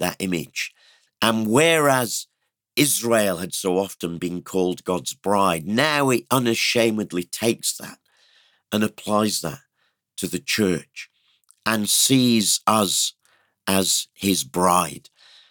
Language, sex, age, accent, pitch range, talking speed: English, male, 50-69, British, 90-115 Hz, 110 wpm